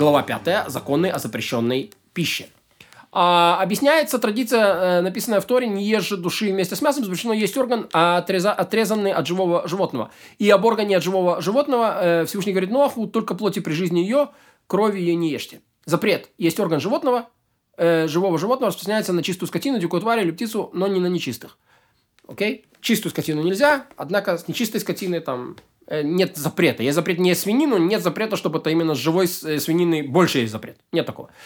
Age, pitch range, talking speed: 20-39, 170-220 Hz, 180 wpm